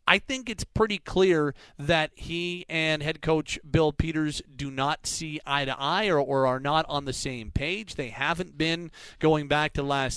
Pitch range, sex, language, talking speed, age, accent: 135-165 Hz, male, English, 195 wpm, 30-49, American